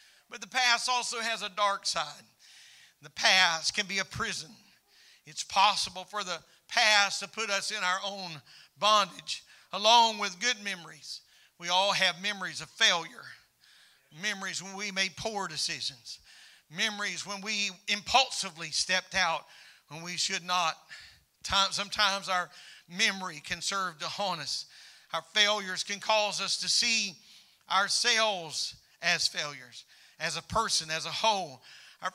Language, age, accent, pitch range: English, 50-69, American, 170-215 Hz